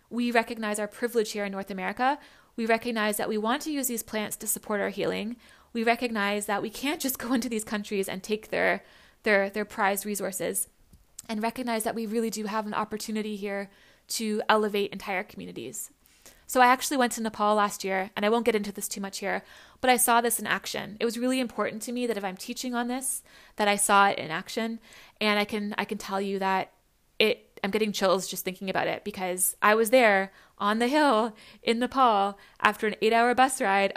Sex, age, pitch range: female, 20-39, 200-235 Hz